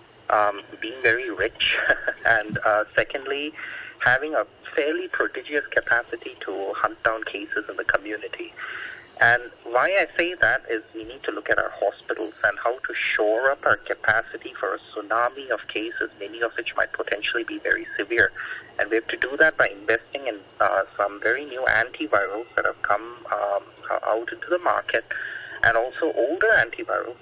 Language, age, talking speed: English, 30-49, 170 wpm